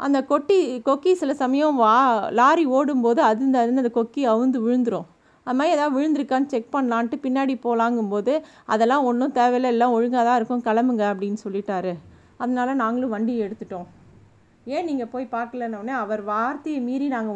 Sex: female